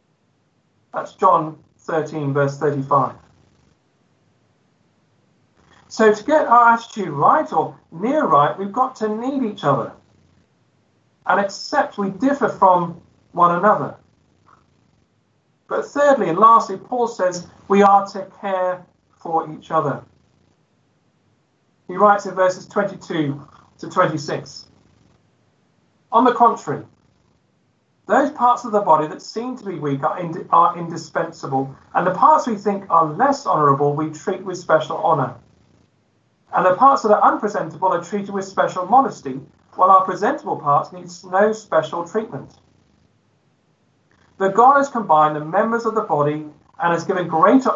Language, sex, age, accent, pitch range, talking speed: English, male, 40-59, British, 155-210 Hz, 135 wpm